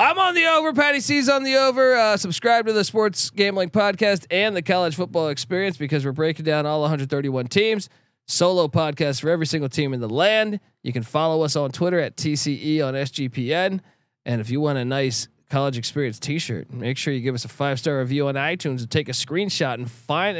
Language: English